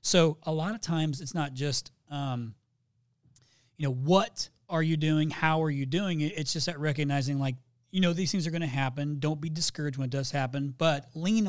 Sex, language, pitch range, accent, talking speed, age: male, English, 135-170 Hz, American, 220 wpm, 30-49